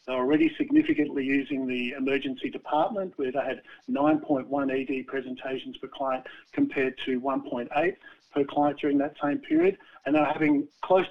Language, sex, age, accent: English, male, 50-69, Australian